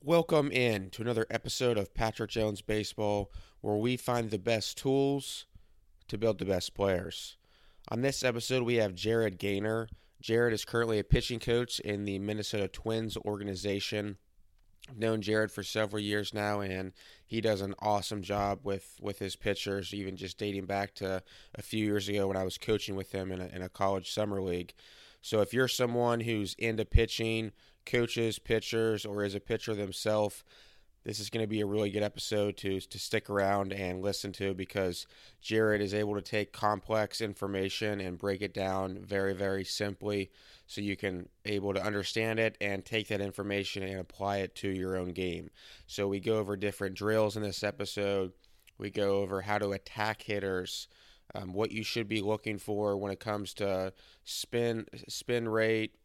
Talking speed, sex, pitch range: 180 wpm, male, 95-110 Hz